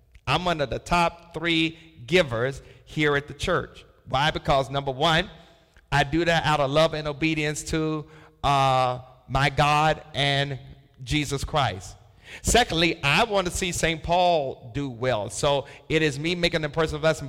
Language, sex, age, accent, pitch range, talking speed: English, male, 50-69, American, 130-170 Hz, 165 wpm